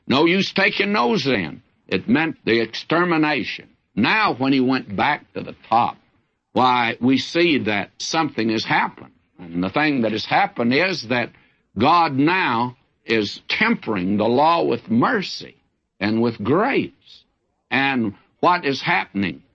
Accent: American